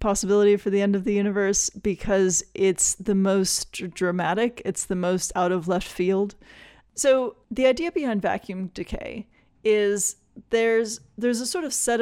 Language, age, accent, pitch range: English, 30-49, American, 185-220 Hz